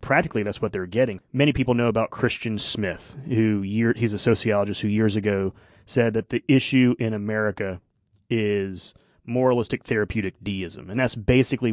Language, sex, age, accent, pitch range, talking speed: English, male, 30-49, American, 105-130 Hz, 160 wpm